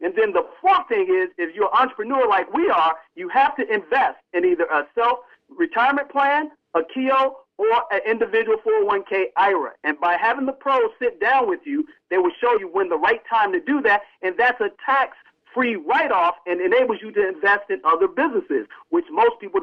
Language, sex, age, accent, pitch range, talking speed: English, male, 50-69, American, 215-355 Hz, 200 wpm